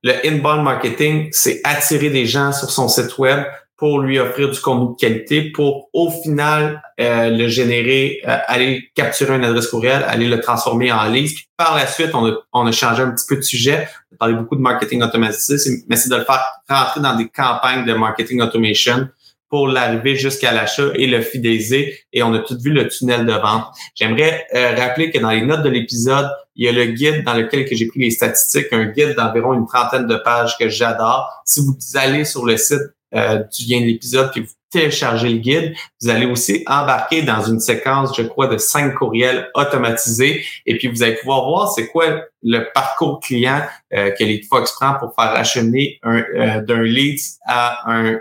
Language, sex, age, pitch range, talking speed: French, male, 30-49, 115-140 Hz, 210 wpm